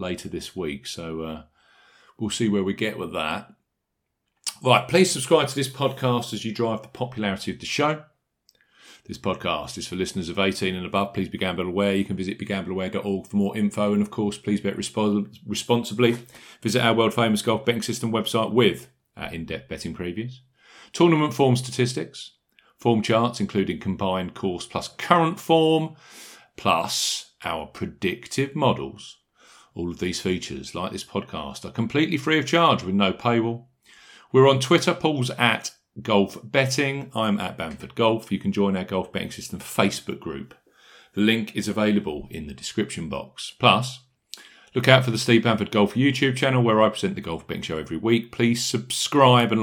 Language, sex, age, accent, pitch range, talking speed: English, male, 40-59, British, 100-130 Hz, 175 wpm